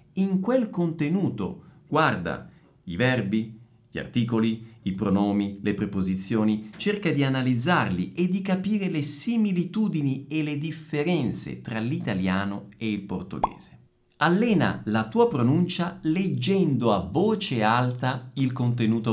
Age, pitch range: 50-69, 115-185 Hz